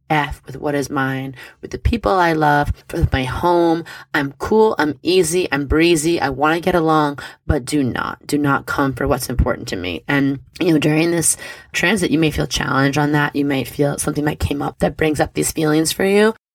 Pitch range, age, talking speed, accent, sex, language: 140-160 Hz, 20-39, 220 wpm, American, female, English